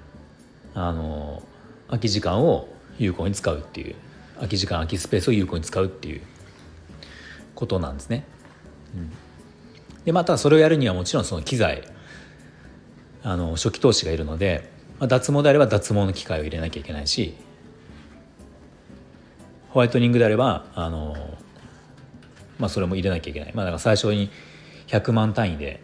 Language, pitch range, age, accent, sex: Japanese, 80-120 Hz, 40-59, native, male